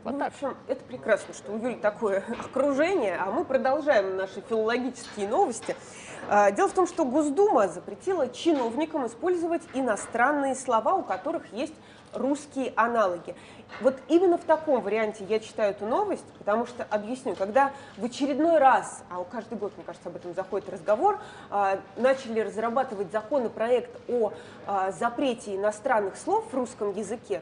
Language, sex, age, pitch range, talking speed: Russian, female, 20-39, 210-300 Hz, 145 wpm